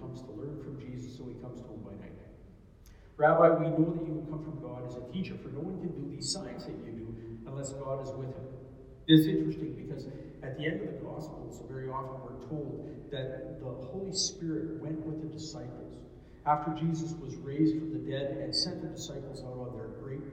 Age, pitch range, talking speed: 50-69, 120-155 Hz, 220 wpm